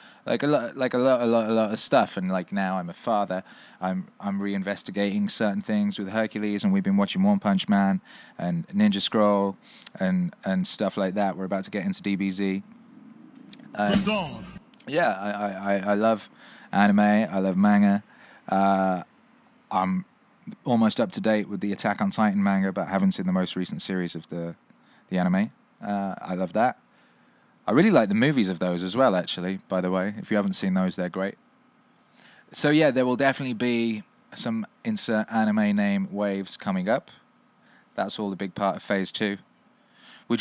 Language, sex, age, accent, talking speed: English, male, 20-39, British, 185 wpm